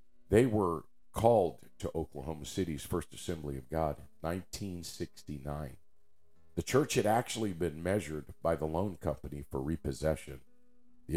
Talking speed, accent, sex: 130 wpm, American, male